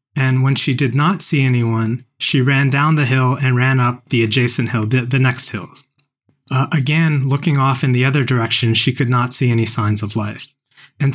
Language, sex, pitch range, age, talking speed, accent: English, male, 120-145 Hz, 30-49, 210 wpm, American